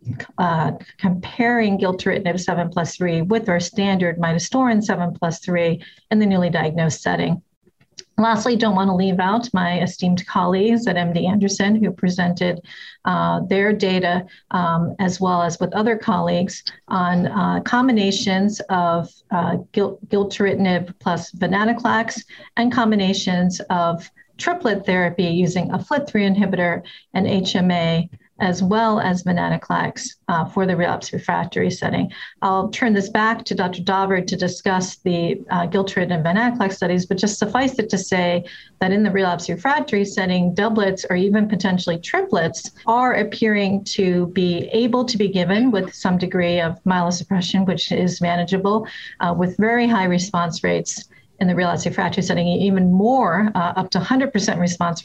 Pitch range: 175-205 Hz